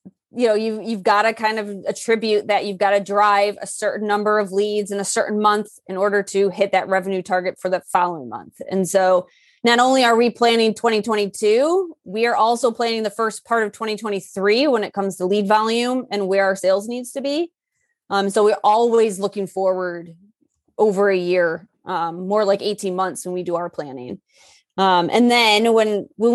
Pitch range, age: 195-225 Hz, 20-39